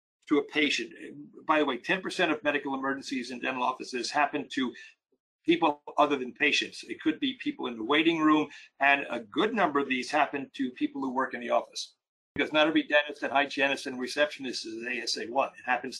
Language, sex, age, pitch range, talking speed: English, male, 50-69, 130-165 Hz, 200 wpm